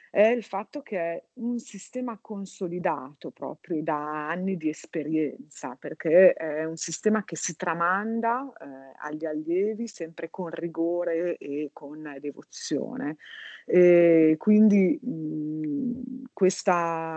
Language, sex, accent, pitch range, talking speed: Italian, female, native, 155-195 Hz, 120 wpm